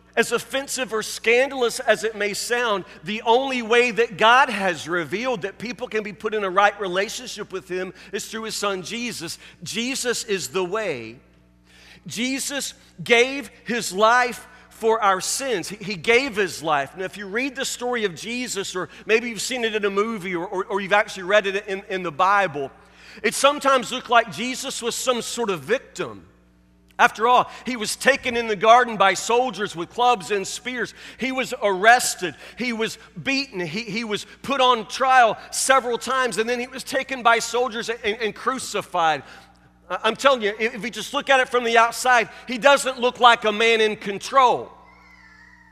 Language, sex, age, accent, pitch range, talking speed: English, male, 40-59, American, 195-245 Hz, 185 wpm